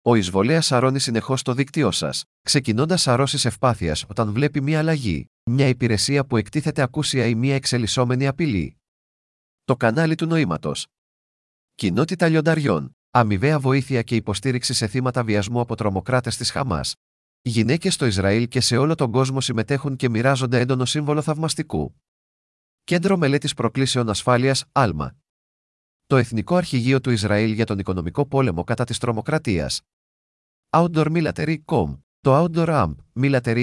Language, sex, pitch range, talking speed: Greek, male, 110-140 Hz, 135 wpm